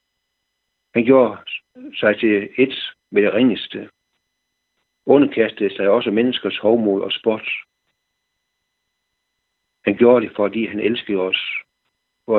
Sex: male